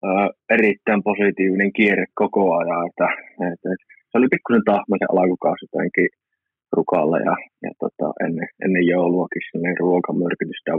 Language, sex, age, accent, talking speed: Finnish, male, 20-39, native, 120 wpm